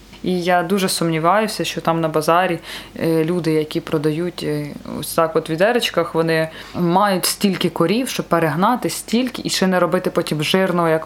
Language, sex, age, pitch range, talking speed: Ukrainian, female, 20-39, 170-215 Hz, 145 wpm